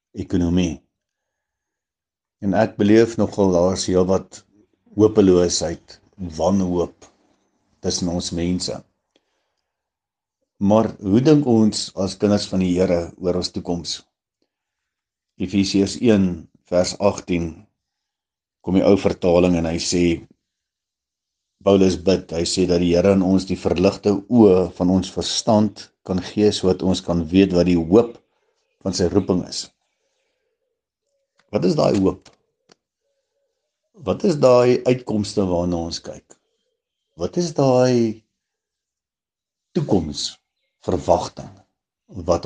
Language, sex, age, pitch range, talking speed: English, male, 60-79, 90-125 Hz, 115 wpm